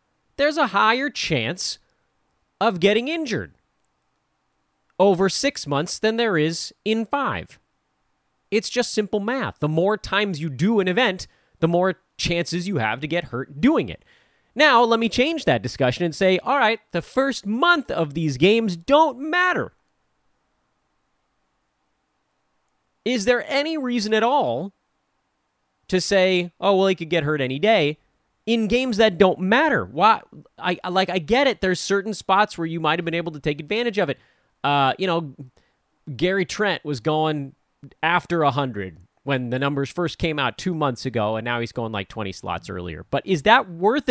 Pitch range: 150-225 Hz